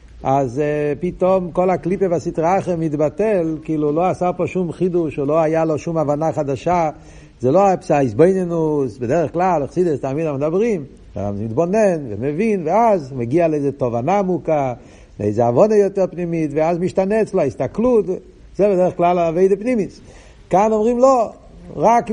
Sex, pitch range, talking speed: male, 160-205 Hz, 150 wpm